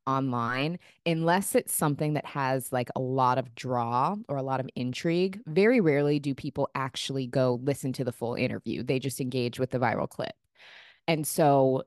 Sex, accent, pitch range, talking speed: female, American, 130-160 Hz, 180 wpm